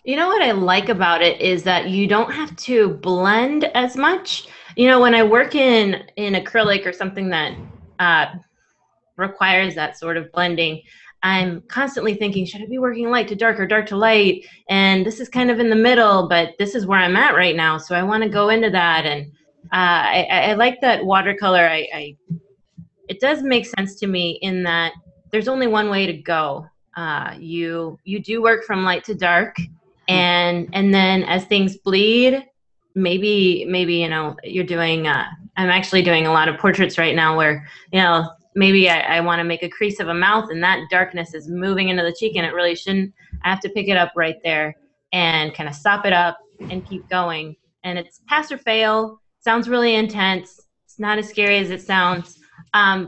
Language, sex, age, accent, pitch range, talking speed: English, female, 20-39, American, 170-215 Hz, 205 wpm